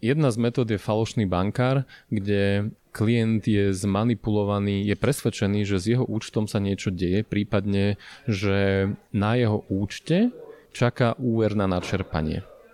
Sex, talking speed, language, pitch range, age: male, 130 wpm, Slovak, 100-120 Hz, 30-49